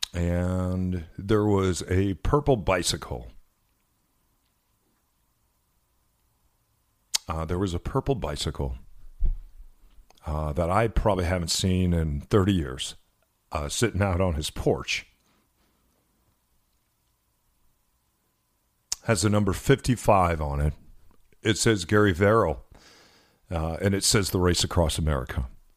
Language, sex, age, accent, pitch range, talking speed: English, male, 50-69, American, 85-110 Hz, 105 wpm